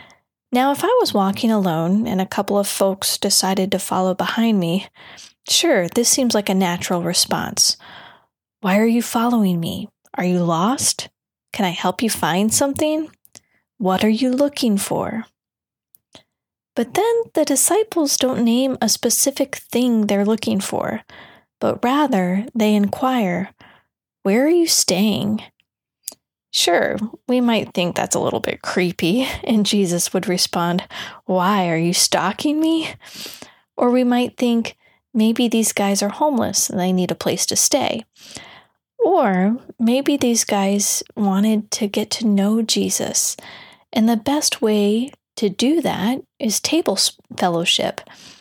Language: English